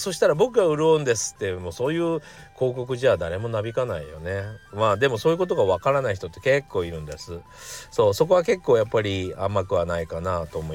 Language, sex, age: Japanese, male, 40-59